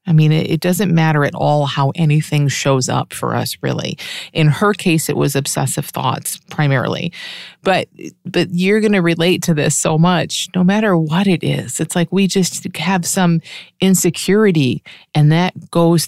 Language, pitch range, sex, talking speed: English, 150-180 Hz, female, 175 wpm